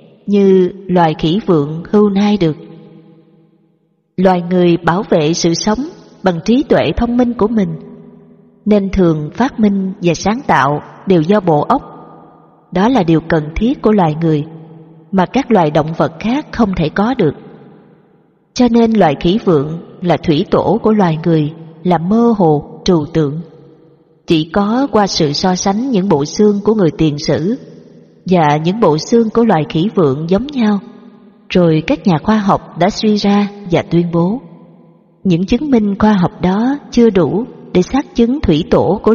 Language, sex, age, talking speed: Vietnamese, female, 20-39, 175 wpm